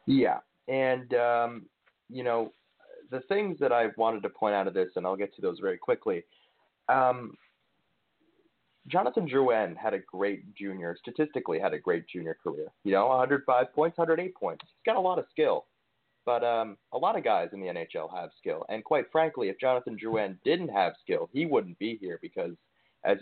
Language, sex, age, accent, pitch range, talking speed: English, male, 30-49, American, 115-185 Hz, 190 wpm